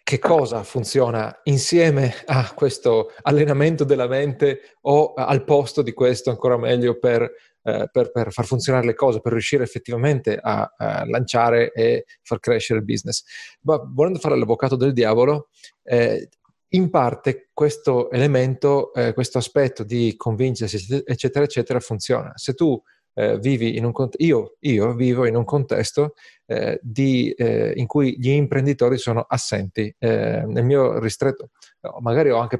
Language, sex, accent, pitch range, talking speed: Italian, male, native, 115-145 Hz, 140 wpm